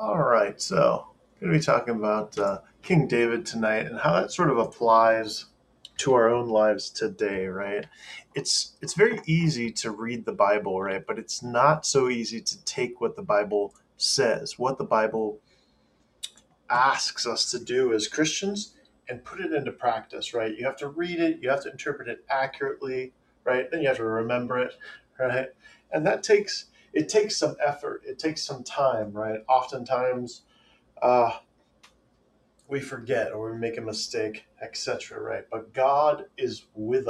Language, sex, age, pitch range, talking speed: English, male, 30-49, 115-180 Hz, 170 wpm